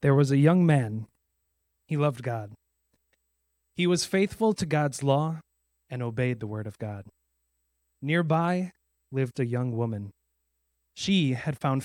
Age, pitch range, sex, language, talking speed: 30-49, 100-165 Hz, male, English, 140 wpm